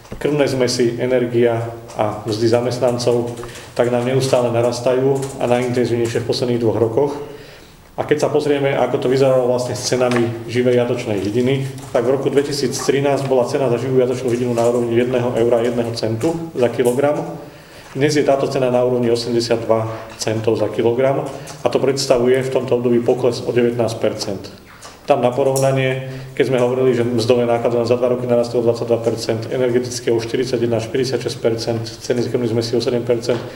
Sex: male